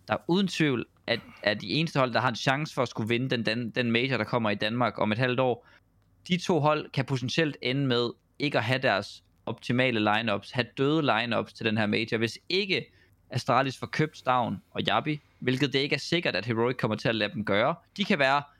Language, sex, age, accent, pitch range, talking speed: Danish, male, 20-39, native, 120-160 Hz, 230 wpm